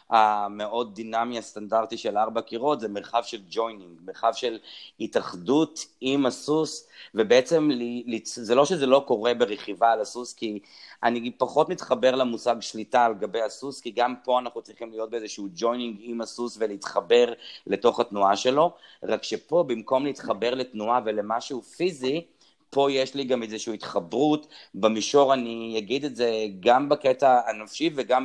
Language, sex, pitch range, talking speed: Hebrew, male, 110-130 Hz, 160 wpm